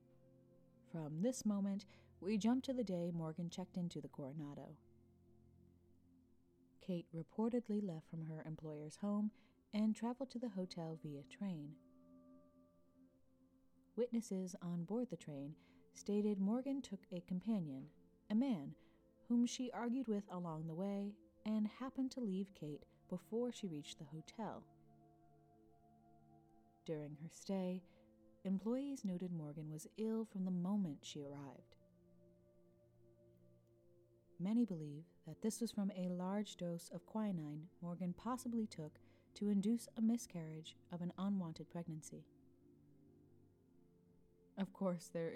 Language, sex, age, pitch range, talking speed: English, female, 30-49, 135-205 Hz, 125 wpm